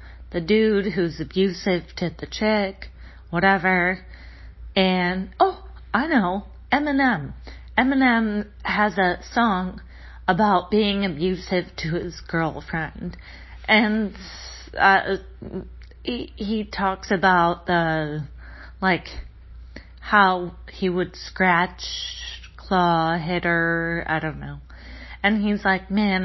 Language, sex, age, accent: English, female, 40-59, American